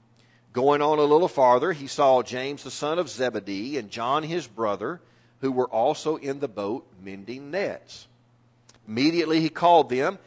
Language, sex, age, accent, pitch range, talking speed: English, male, 50-69, American, 120-160 Hz, 165 wpm